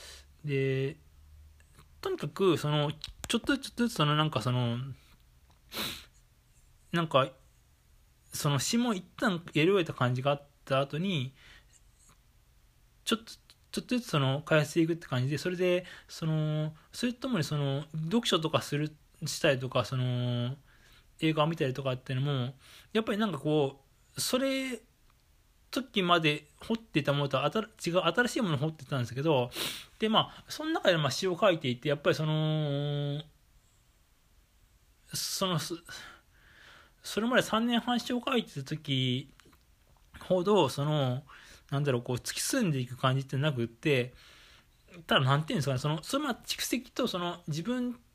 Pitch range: 130-185 Hz